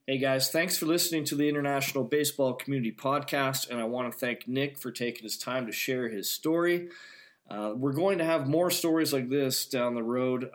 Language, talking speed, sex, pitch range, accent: English, 210 wpm, male, 110-140 Hz, American